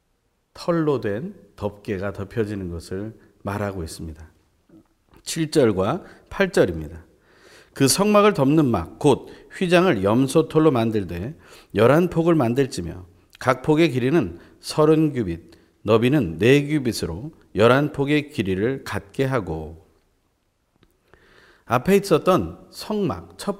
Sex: male